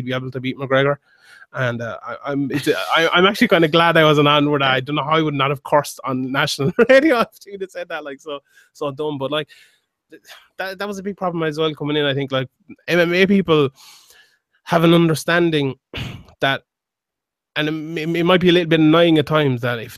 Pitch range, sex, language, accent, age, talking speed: 145-175 Hz, male, English, Irish, 20-39, 225 wpm